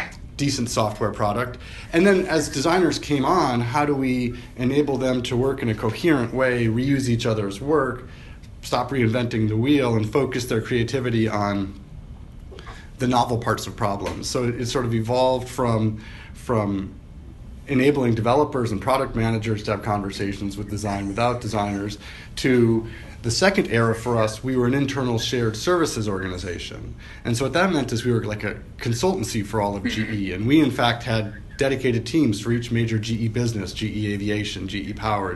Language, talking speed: English, 170 wpm